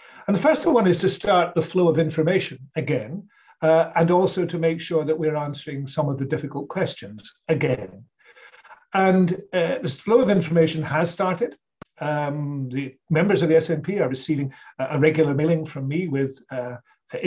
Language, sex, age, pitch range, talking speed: English, male, 50-69, 145-170 Hz, 175 wpm